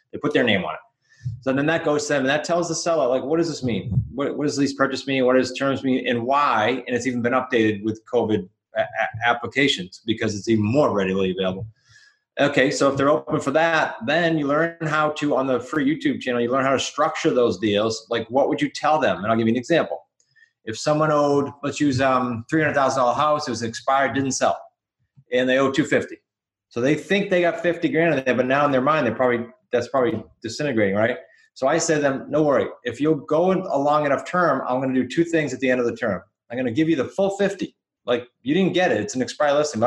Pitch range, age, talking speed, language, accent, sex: 120-155 Hz, 30-49, 250 wpm, English, American, male